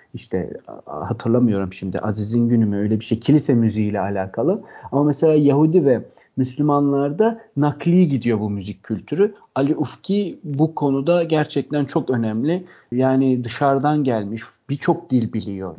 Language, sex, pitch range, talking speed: Turkish, male, 115-170 Hz, 135 wpm